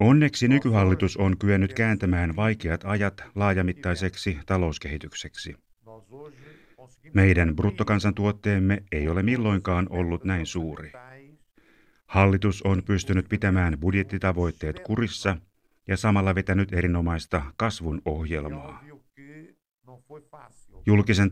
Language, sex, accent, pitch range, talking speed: Finnish, male, native, 90-110 Hz, 85 wpm